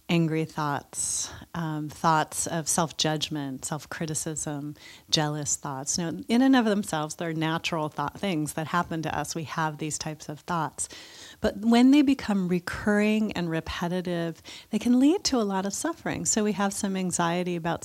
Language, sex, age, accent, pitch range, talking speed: English, female, 40-59, American, 160-205 Hz, 165 wpm